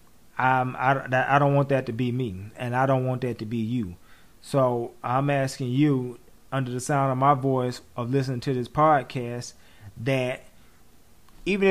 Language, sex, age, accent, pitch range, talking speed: English, male, 30-49, American, 125-145 Hz, 170 wpm